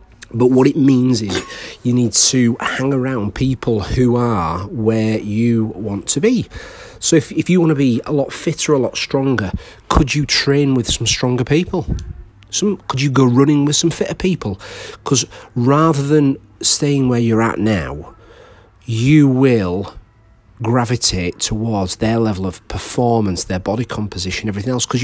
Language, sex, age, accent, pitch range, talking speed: English, male, 40-59, British, 100-130 Hz, 165 wpm